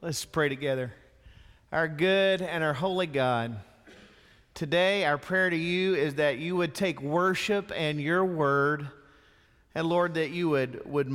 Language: English